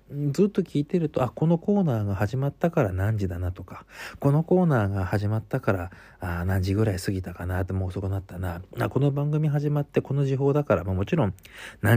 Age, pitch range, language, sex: 40-59, 95-145 Hz, Japanese, male